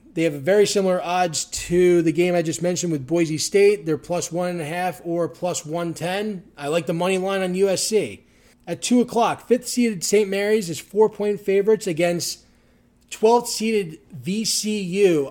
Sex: male